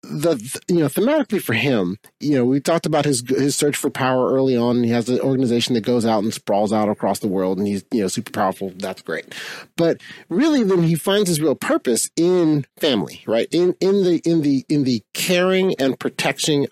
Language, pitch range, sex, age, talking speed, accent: English, 120-155 Hz, male, 30-49, 215 wpm, American